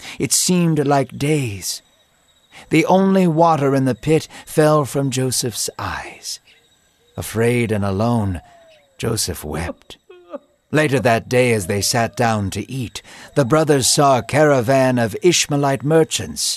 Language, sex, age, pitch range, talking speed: English, male, 60-79, 115-165 Hz, 130 wpm